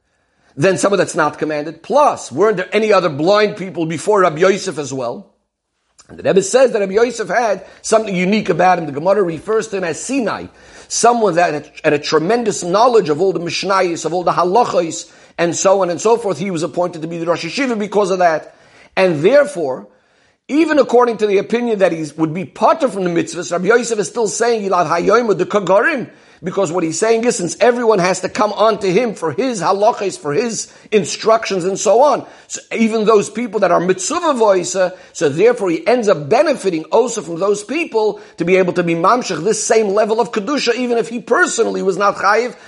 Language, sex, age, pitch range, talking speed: English, male, 50-69, 180-230 Hz, 210 wpm